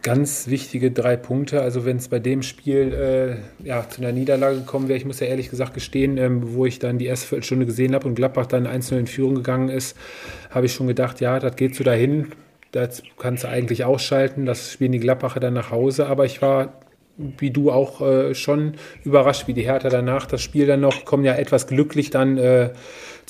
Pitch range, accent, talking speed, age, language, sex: 125-140 Hz, German, 220 wpm, 40-59, German, male